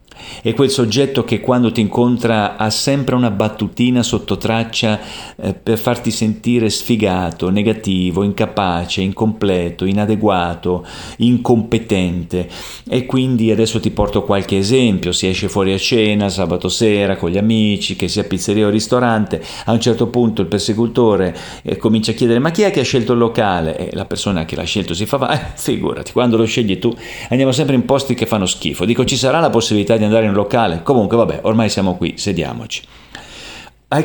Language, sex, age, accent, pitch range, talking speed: Italian, male, 40-59, native, 95-125 Hz, 180 wpm